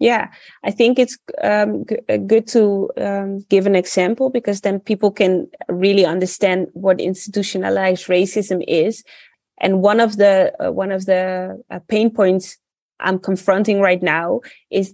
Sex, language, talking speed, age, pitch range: female, English, 150 wpm, 20-39, 185-225 Hz